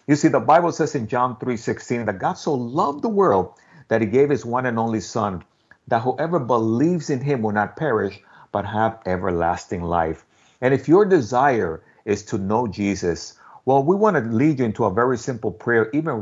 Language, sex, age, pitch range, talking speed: English, male, 50-69, 95-140 Hz, 205 wpm